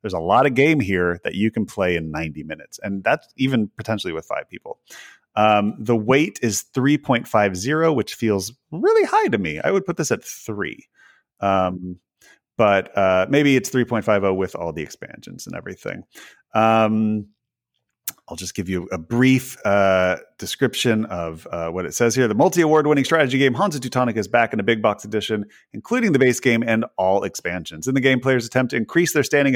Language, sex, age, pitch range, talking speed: English, male, 30-49, 100-140 Hz, 185 wpm